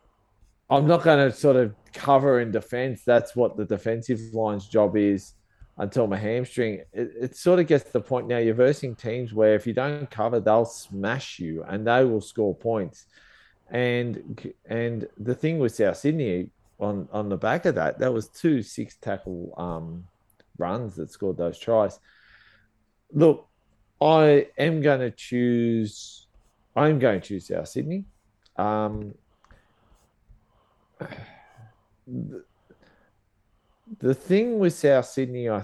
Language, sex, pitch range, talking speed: English, male, 100-130 Hz, 145 wpm